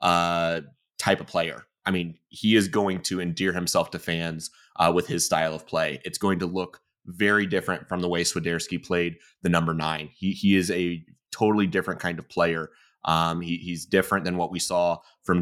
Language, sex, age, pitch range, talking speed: English, male, 30-49, 85-100 Hz, 200 wpm